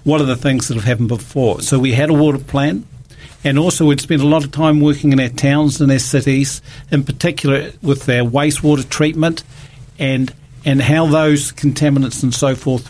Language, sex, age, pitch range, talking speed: English, male, 50-69, 125-145 Hz, 200 wpm